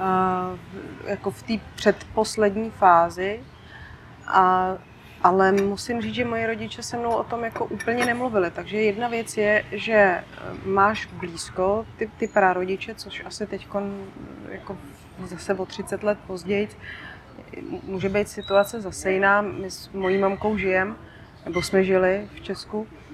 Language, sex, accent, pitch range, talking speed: Czech, female, native, 190-210 Hz, 140 wpm